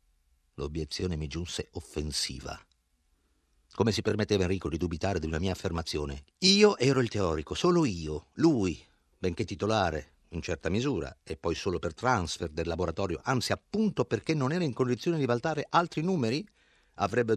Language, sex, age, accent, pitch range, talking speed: Italian, male, 50-69, native, 75-115 Hz, 155 wpm